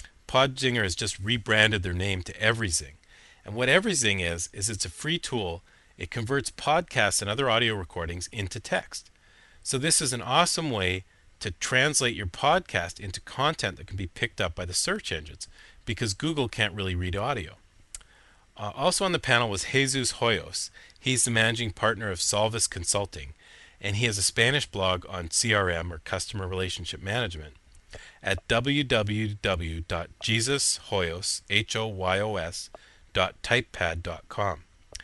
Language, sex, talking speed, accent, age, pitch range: English, male, 140 wpm, American, 40-59, 95-125 Hz